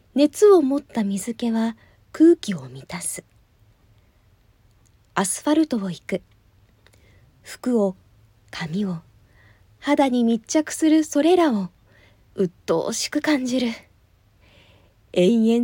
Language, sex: Japanese, female